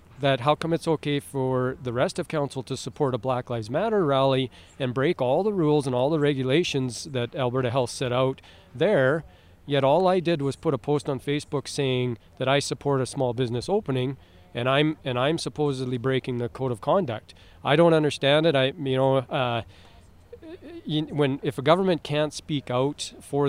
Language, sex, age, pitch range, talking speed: English, male, 40-59, 125-150 Hz, 195 wpm